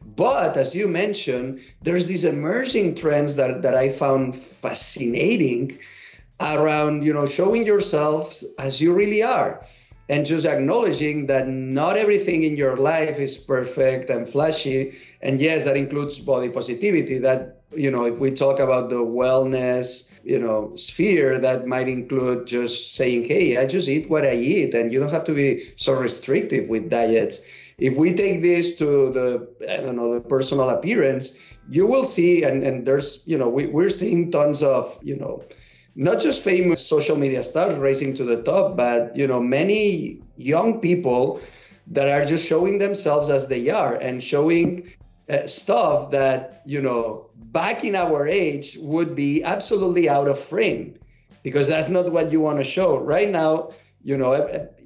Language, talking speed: English, 170 wpm